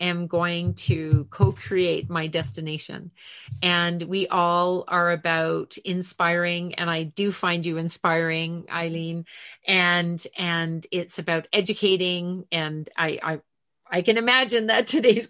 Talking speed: 125 wpm